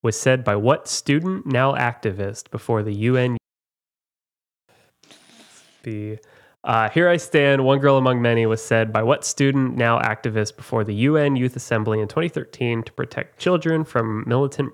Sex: male